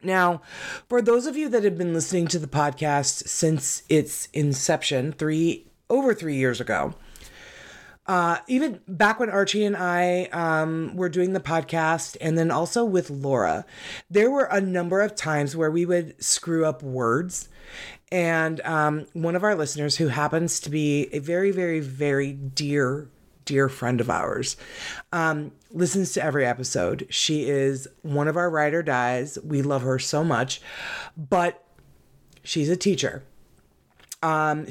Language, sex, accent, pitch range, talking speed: English, female, American, 145-180 Hz, 155 wpm